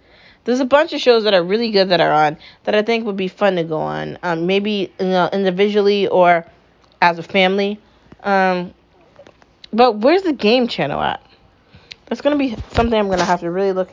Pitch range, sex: 175-240 Hz, female